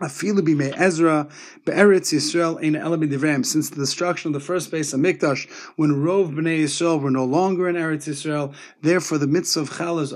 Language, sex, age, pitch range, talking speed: English, male, 30-49, 145-175 Hz, 190 wpm